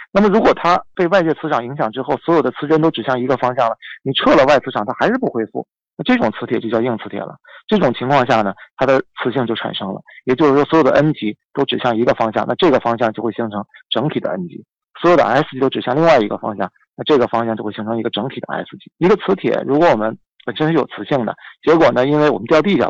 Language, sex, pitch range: Chinese, male, 115-140 Hz